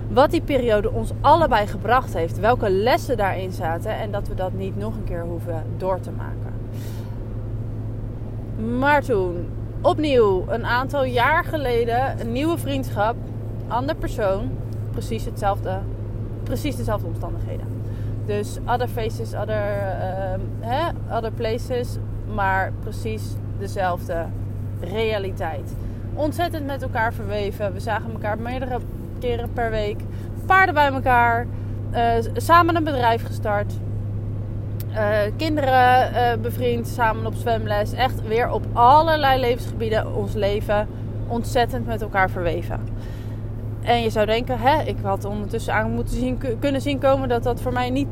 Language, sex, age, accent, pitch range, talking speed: Dutch, female, 20-39, Dutch, 105-120 Hz, 135 wpm